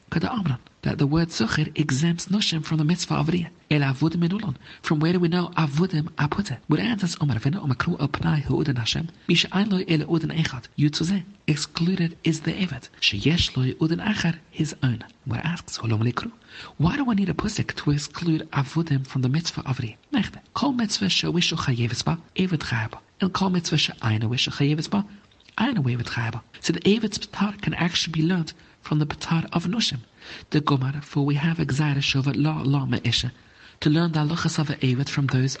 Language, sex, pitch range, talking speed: English, male, 135-175 Hz, 185 wpm